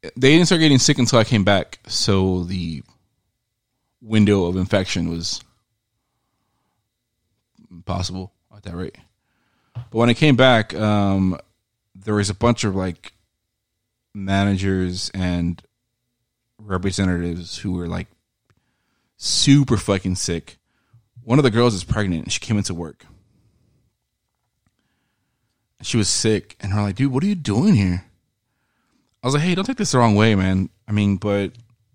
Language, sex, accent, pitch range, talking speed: English, male, American, 95-120 Hz, 145 wpm